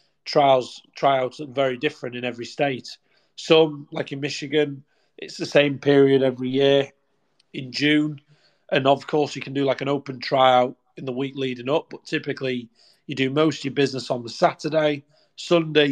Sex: male